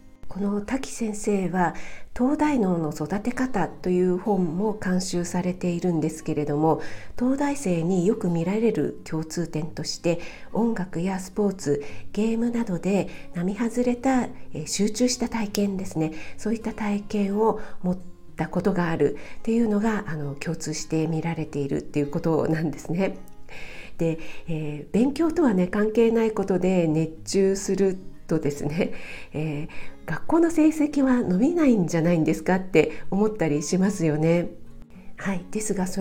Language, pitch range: Japanese, 160-220 Hz